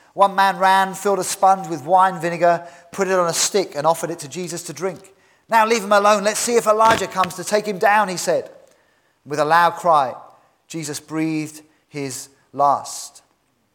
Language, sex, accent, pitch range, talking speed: English, male, British, 150-175 Hz, 190 wpm